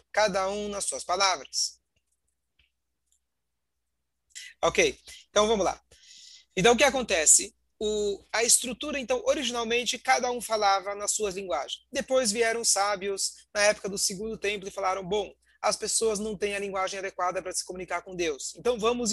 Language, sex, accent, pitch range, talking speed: Portuguese, male, Brazilian, 190-245 Hz, 155 wpm